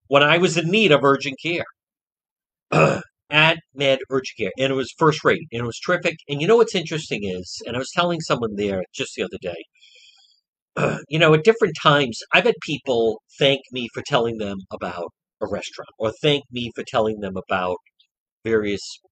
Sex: male